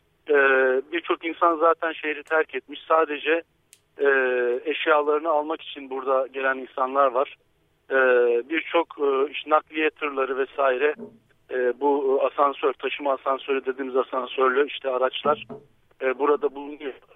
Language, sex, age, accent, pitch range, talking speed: Turkish, male, 50-69, native, 135-180 Hz, 120 wpm